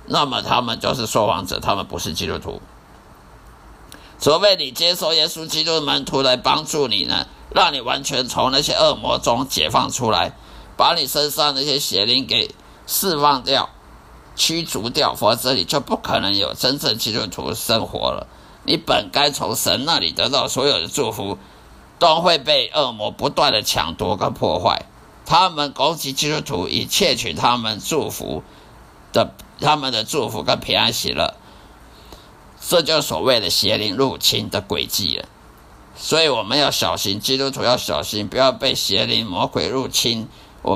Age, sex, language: 50-69, male, Chinese